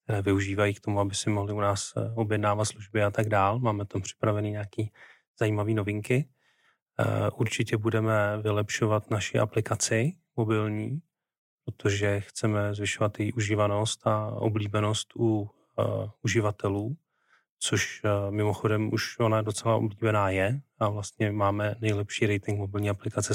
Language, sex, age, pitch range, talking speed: Czech, male, 30-49, 105-115 Hz, 125 wpm